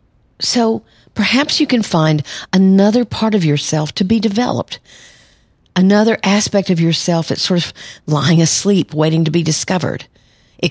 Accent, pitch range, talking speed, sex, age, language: American, 155-190 Hz, 145 wpm, female, 50-69, English